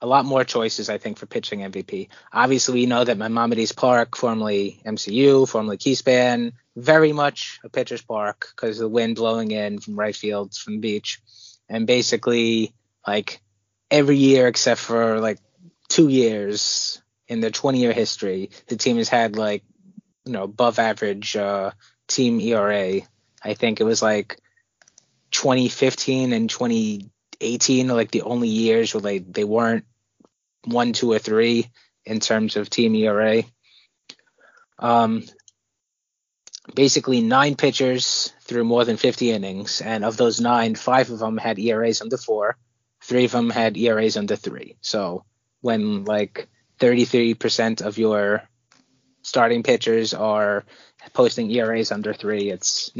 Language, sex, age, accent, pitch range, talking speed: English, male, 20-39, American, 110-125 Hz, 145 wpm